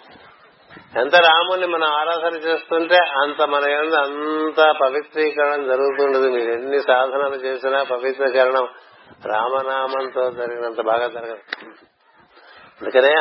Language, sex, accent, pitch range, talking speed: Telugu, male, native, 125-145 Hz, 95 wpm